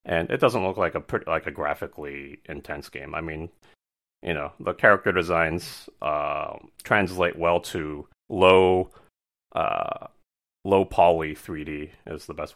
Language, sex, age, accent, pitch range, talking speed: English, male, 30-49, American, 75-95 Hz, 150 wpm